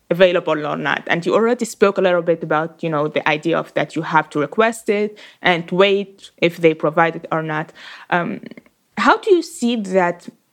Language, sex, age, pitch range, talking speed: English, female, 20-39, 165-200 Hz, 205 wpm